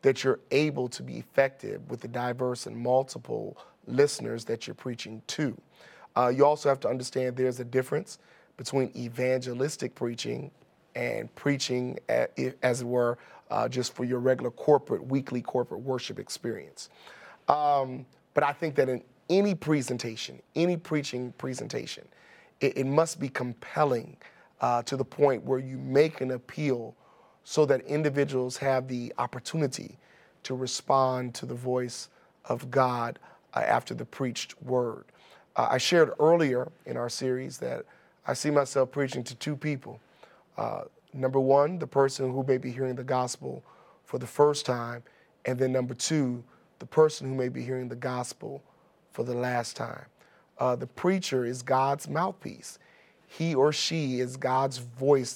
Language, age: English, 30-49